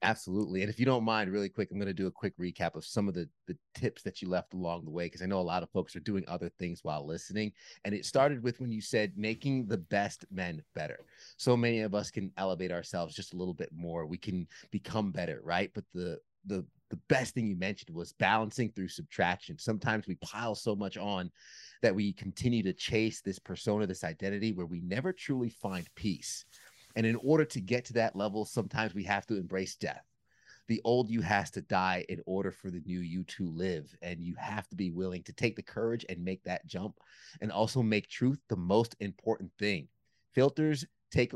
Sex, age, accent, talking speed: male, 30-49, American, 225 wpm